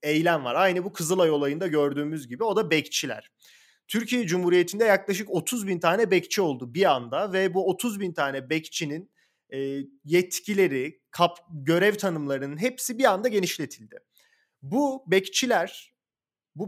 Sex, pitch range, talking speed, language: male, 155-220 Hz, 140 wpm, Turkish